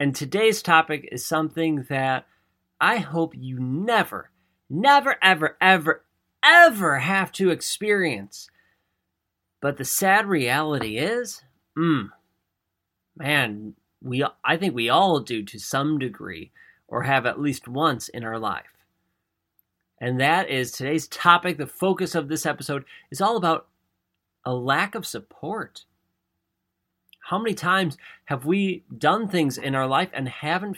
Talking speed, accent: 135 wpm, American